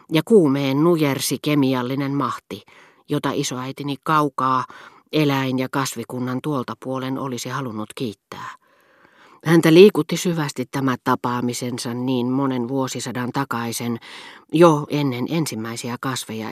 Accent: native